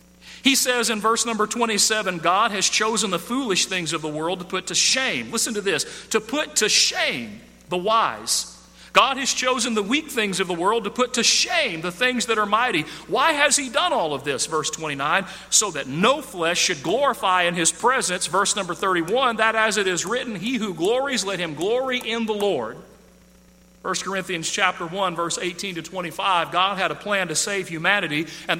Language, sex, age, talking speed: English, male, 40-59, 205 wpm